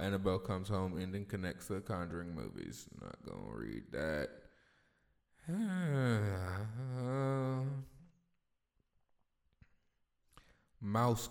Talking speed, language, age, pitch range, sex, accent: 75 wpm, English, 20-39, 95-135 Hz, male, American